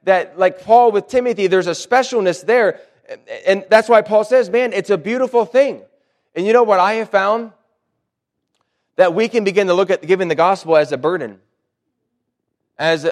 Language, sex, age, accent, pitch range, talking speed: English, male, 30-49, American, 165-225 Hz, 185 wpm